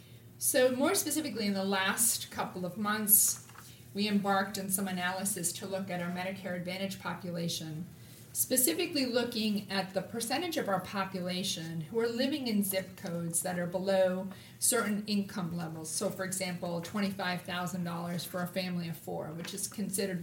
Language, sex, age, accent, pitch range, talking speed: English, female, 40-59, American, 170-205 Hz, 155 wpm